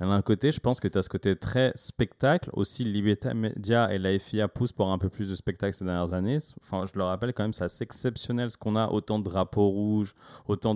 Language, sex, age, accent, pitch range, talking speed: French, male, 30-49, French, 95-120 Hz, 245 wpm